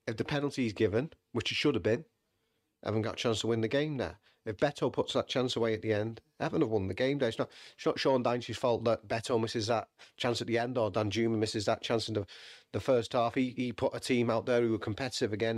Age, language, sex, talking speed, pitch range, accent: 40-59, English, male, 275 wpm, 105-120 Hz, British